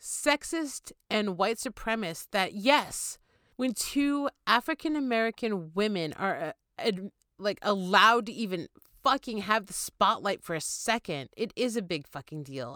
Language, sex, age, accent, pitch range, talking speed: English, female, 30-49, American, 180-245 Hz, 135 wpm